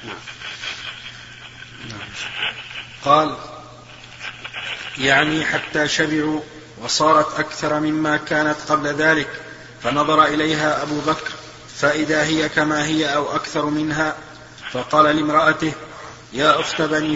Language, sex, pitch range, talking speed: Arabic, male, 150-160 Hz, 90 wpm